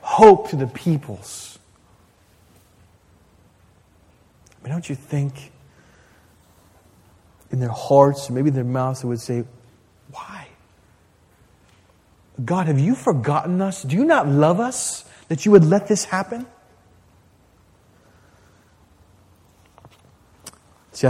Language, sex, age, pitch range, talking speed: English, male, 30-49, 95-150 Hz, 110 wpm